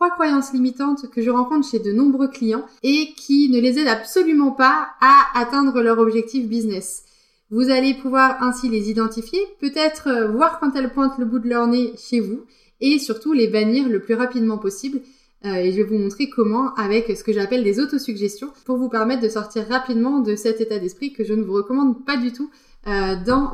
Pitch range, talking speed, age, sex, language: 225-270 Hz, 205 wpm, 20-39, female, French